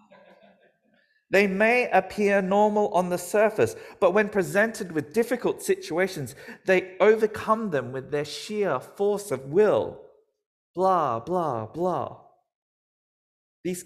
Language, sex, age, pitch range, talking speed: English, male, 40-59, 160-220 Hz, 115 wpm